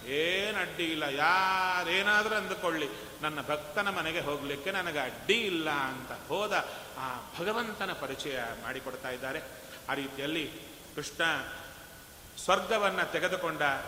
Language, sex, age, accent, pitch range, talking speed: Kannada, male, 30-49, native, 135-165 Hz, 105 wpm